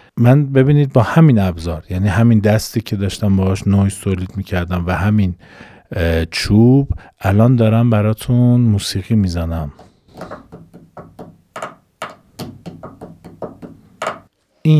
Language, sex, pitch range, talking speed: Persian, male, 90-115 Hz, 95 wpm